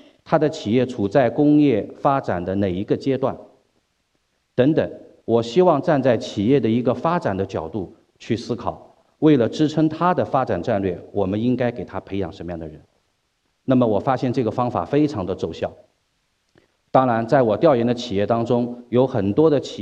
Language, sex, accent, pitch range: Chinese, male, native, 95-130 Hz